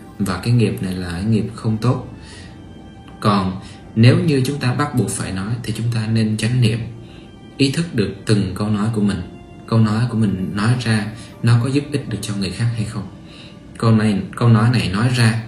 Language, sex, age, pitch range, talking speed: Vietnamese, male, 20-39, 100-115 Hz, 215 wpm